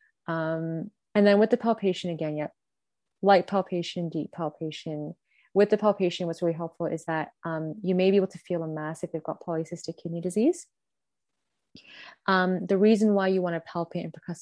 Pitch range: 160-185 Hz